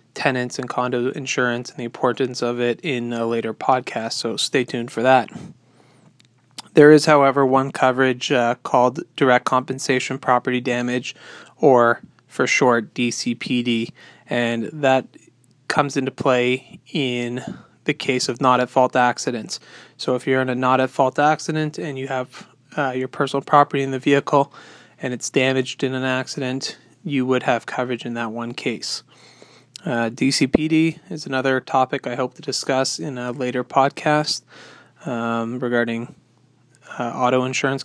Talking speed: 145 wpm